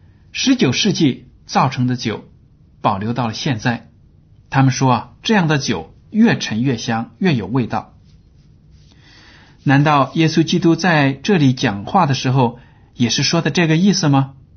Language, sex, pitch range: Chinese, male, 115-155 Hz